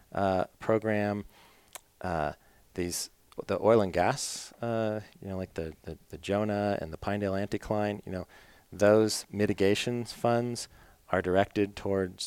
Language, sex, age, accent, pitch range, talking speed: English, male, 40-59, American, 85-105 Hz, 135 wpm